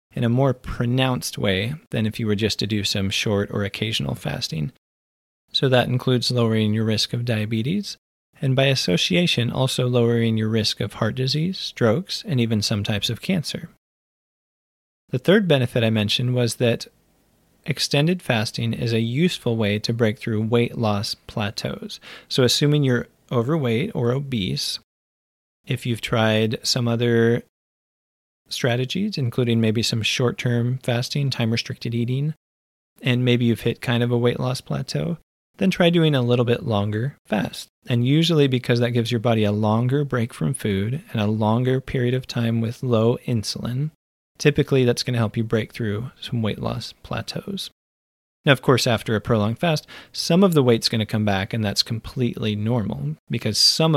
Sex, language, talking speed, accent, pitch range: male, English, 170 wpm, American, 110-130 Hz